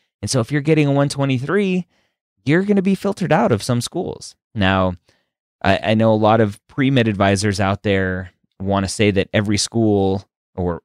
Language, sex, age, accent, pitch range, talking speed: English, male, 20-39, American, 90-115 Hz, 190 wpm